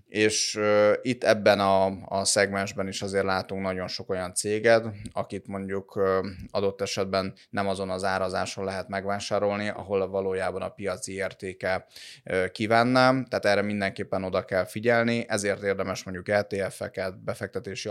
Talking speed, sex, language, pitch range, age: 130 wpm, male, Hungarian, 95-105 Hz, 20-39